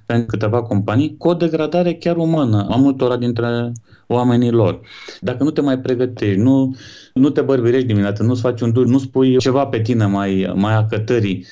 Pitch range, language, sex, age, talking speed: 105-135 Hz, Romanian, male, 30-49, 180 wpm